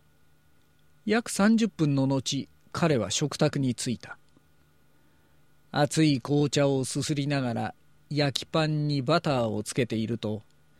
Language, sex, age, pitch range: Japanese, male, 40-59, 110-155 Hz